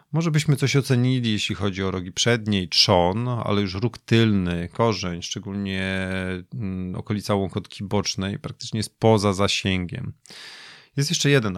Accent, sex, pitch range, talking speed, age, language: native, male, 95-120 Hz, 135 wpm, 30-49, Polish